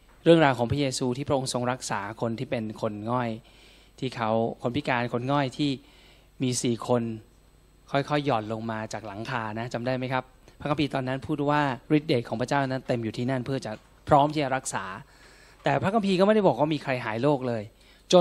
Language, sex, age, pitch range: Thai, male, 20-39, 120-155 Hz